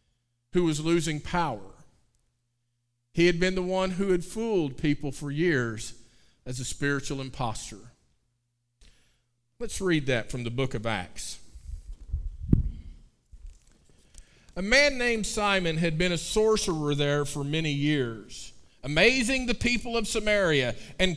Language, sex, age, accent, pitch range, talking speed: English, male, 40-59, American, 130-205 Hz, 130 wpm